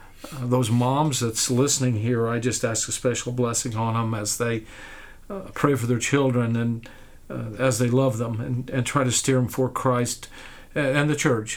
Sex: male